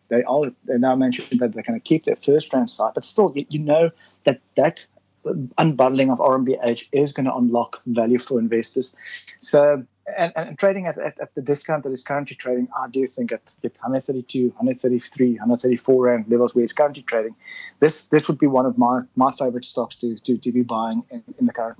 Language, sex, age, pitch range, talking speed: English, male, 30-49, 125-170 Hz, 205 wpm